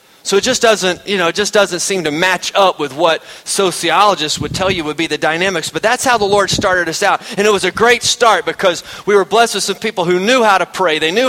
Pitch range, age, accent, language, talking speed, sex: 175-220 Hz, 30-49, American, English, 270 wpm, male